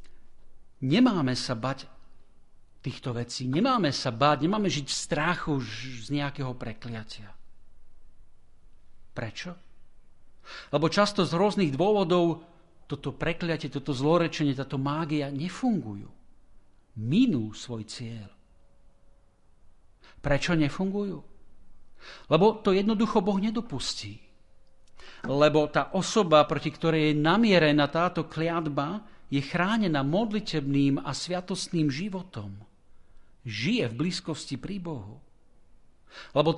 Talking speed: 95 wpm